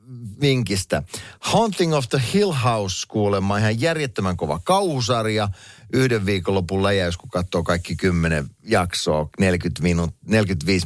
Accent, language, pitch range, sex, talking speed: native, Finnish, 90-125 Hz, male, 125 wpm